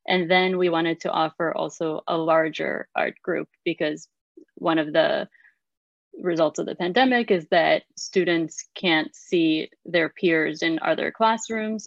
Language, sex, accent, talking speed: English, female, American, 145 wpm